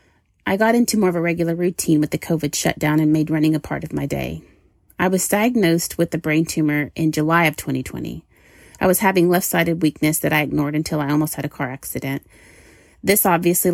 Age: 30-49